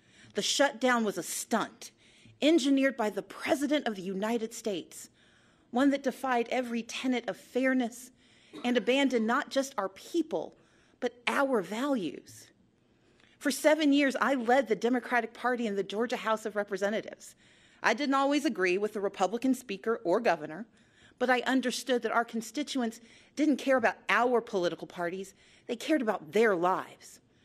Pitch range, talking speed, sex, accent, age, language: 195-255 Hz, 155 wpm, female, American, 40-59, English